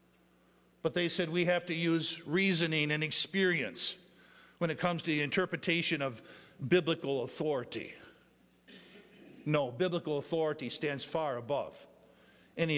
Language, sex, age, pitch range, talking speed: English, male, 50-69, 155-195 Hz, 120 wpm